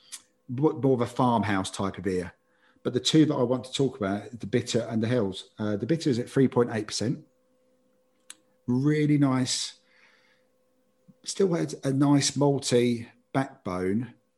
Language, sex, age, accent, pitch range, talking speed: English, male, 40-59, British, 105-130 Hz, 145 wpm